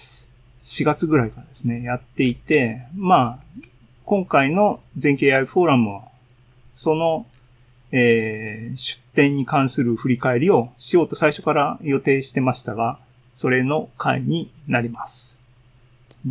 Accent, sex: native, male